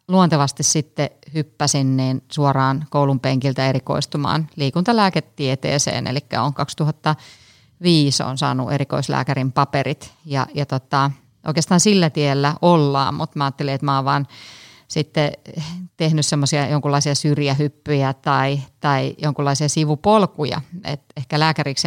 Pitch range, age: 140-155 Hz, 30-49